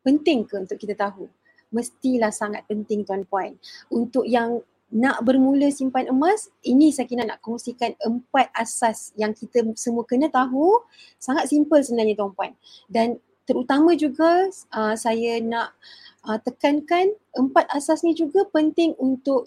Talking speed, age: 140 wpm, 30-49